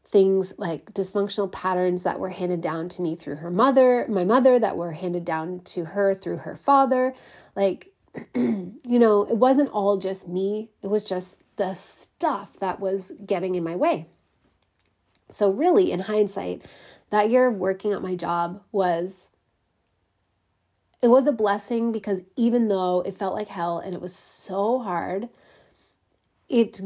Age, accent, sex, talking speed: 30-49, American, female, 160 wpm